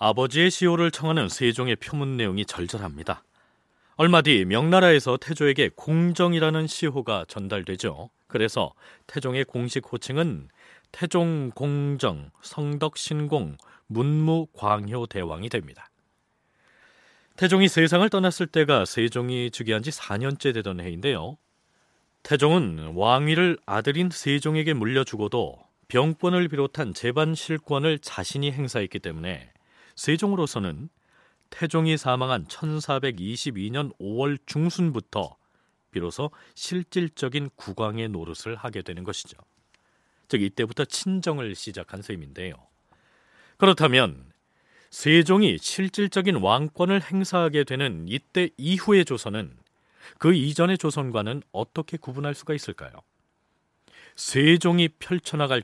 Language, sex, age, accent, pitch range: Korean, male, 40-59, native, 110-160 Hz